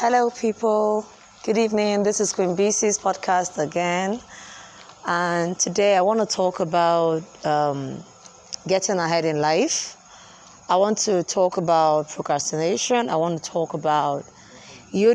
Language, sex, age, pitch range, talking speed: English, female, 20-39, 155-190 Hz, 135 wpm